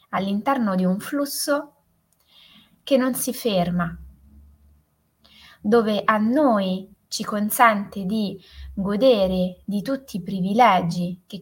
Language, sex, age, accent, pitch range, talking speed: Italian, female, 20-39, native, 180-245 Hz, 105 wpm